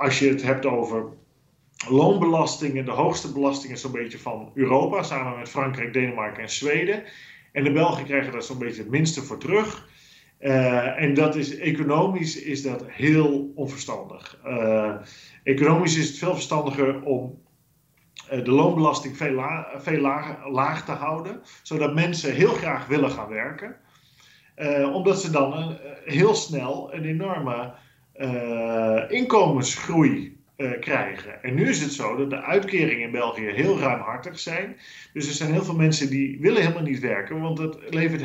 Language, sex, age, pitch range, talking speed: Dutch, male, 40-59, 135-160 Hz, 160 wpm